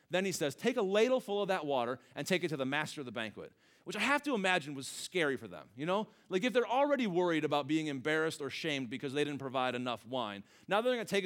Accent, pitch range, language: American, 130-200 Hz, English